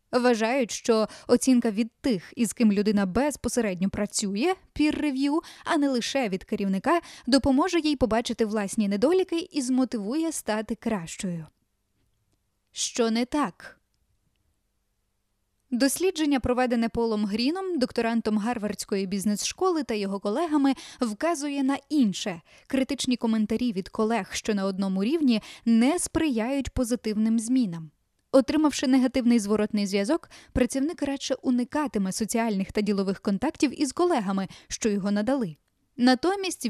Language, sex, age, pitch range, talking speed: Ukrainian, female, 10-29, 210-275 Hz, 115 wpm